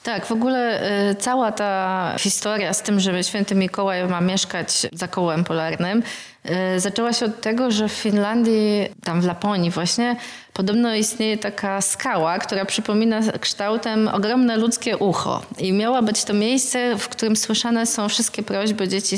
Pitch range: 195-225 Hz